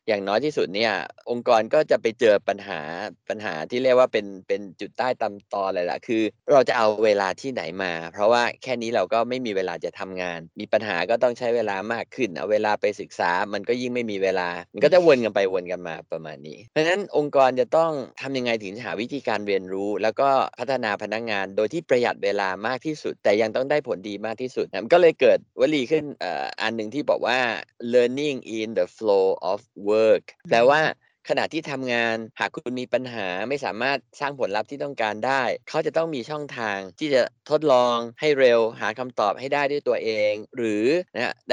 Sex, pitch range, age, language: male, 105-145 Hz, 20-39, Thai